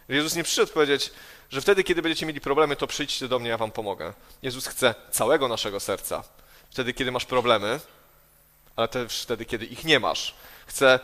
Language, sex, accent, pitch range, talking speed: Polish, male, native, 125-165 Hz, 185 wpm